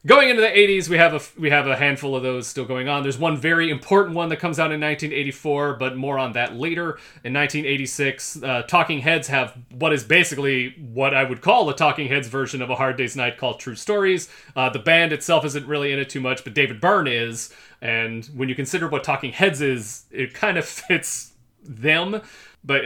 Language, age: English, 30-49